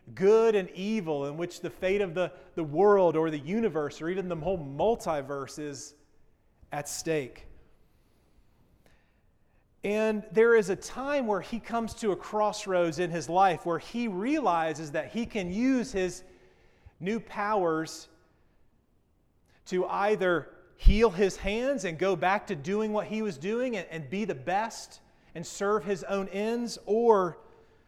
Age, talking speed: 40-59, 155 wpm